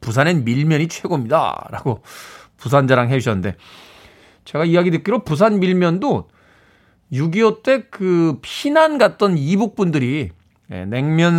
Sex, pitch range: male, 125-185 Hz